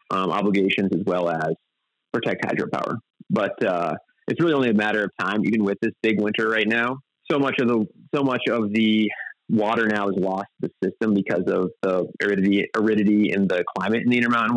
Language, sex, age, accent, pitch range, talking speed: English, male, 20-39, American, 95-110 Hz, 200 wpm